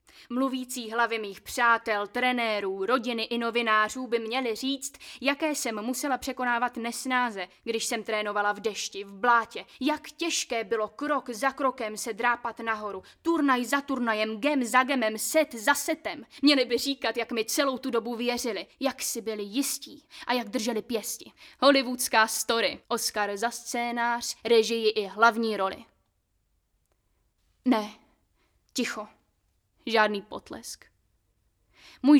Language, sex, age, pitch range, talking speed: Czech, female, 10-29, 215-260 Hz, 135 wpm